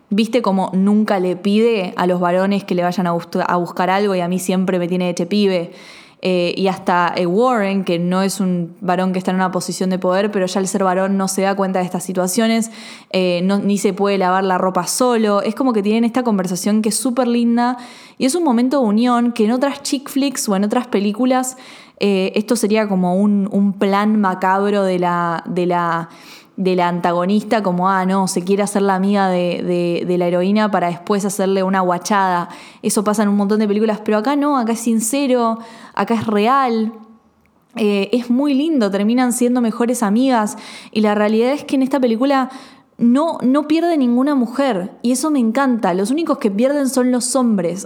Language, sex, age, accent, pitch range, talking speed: Spanish, female, 20-39, Argentinian, 185-235 Hz, 210 wpm